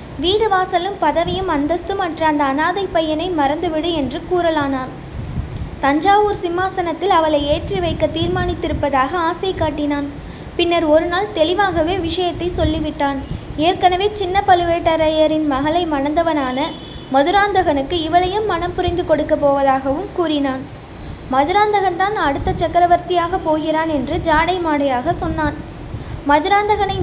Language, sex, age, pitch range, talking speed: Tamil, female, 20-39, 300-365 Hz, 100 wpm